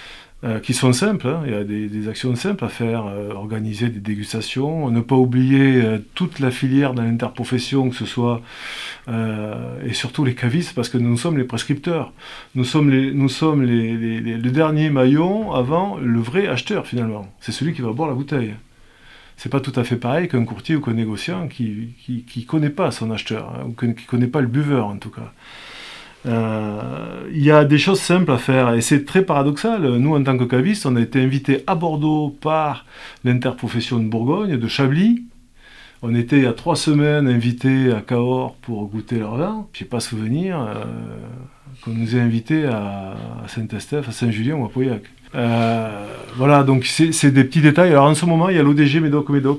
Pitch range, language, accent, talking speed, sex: 115-145 Hz, French, French, 200 wpm, male